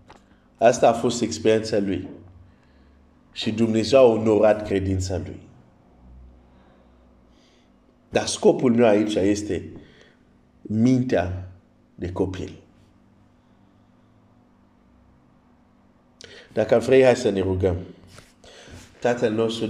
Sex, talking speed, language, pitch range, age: male, 85 wpm, Romanian, 95-120 Hz, 50-69